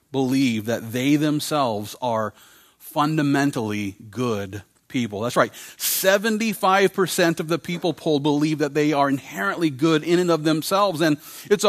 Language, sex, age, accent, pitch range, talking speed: English, male, 40-59, American, 145-195 Hz, 140 wpm